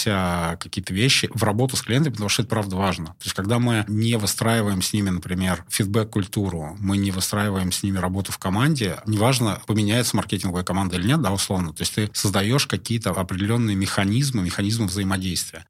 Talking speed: 180 wpm